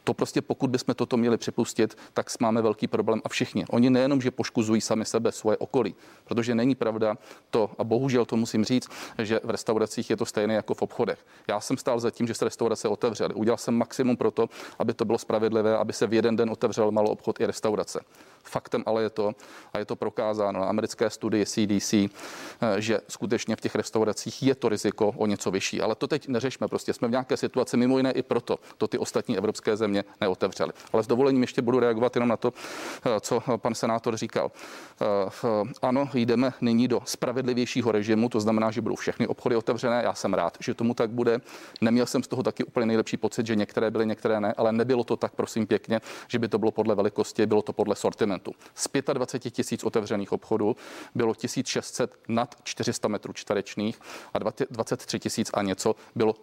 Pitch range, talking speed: 110-120 Hz, 200 wpm